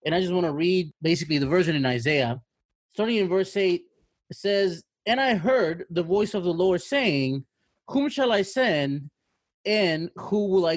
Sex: male